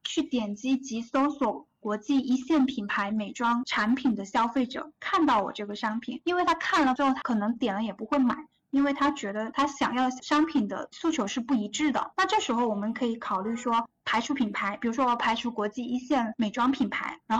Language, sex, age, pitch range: Chinese, female, 10-29, 230-290 Hz